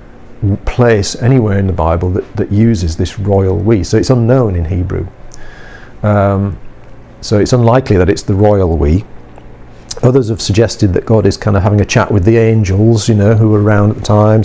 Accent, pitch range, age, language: British, 95-120 Hz, 50-69, English